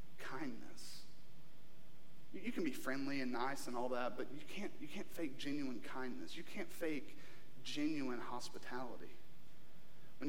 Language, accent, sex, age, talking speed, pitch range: English, American, male, 30-49, 135 wpm, 135-175 Hz